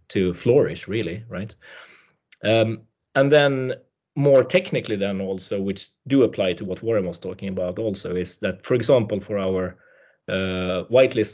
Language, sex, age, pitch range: English, male, 30-49, 95-110 Hz